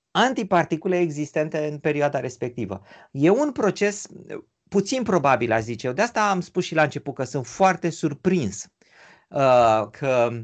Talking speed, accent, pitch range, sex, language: 150 wpm, native, 125-200 Hz, male, Romanian